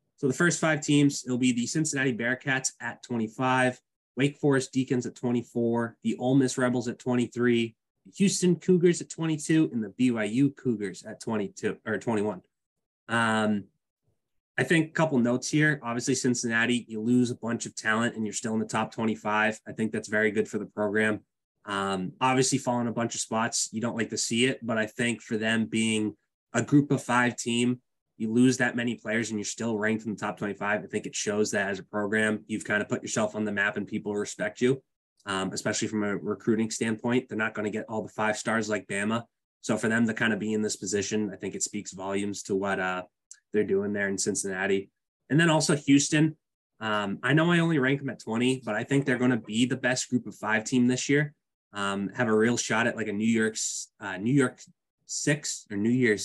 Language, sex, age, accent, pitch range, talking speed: English, male, 20-39, American, 105-130 Hz, 220 wpm